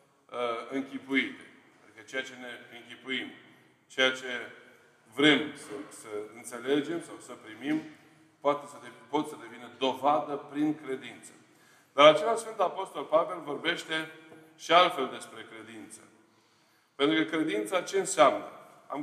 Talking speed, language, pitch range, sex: 125 wpm, Romanian, 135-170 Hz, male